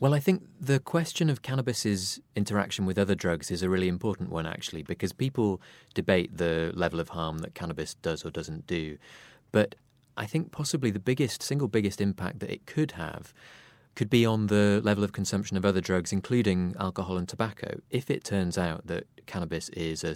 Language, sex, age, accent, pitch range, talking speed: English, male, 30-49, British, 85-105 Hz, 195 wpm